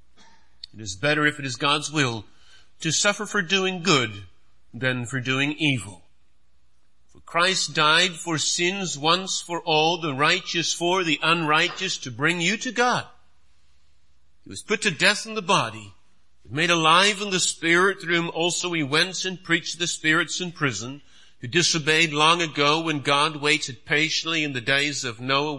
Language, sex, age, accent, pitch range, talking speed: English, male, 50-69, American, 120-175 Hz, 170 wpm